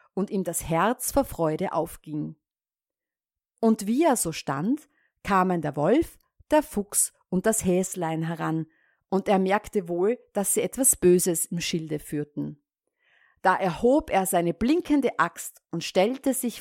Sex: female